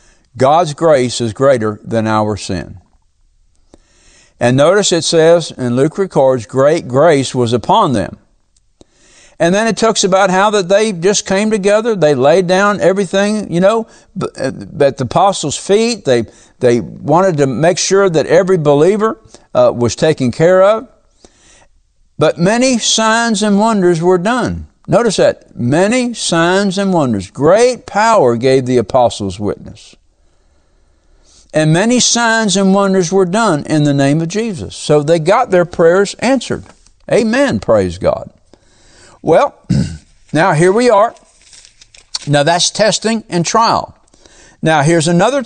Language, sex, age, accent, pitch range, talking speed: English, male, 60-79, American, 125-200 Hz, 140 wpm